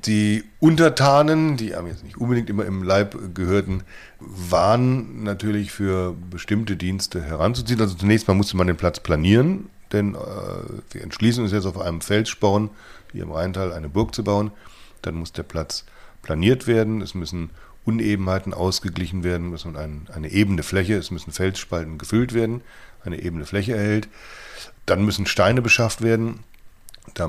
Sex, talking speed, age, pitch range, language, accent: male, 160 wpm, 40-59, 85-110 Hz, German, German